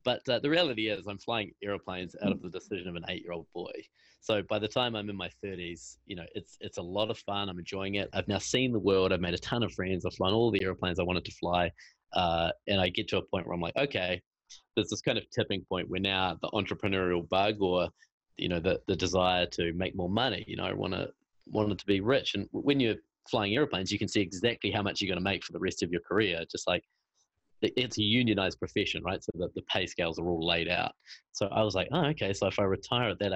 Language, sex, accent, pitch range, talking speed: English, male, Australian, 90-110 Hz, 255 wpm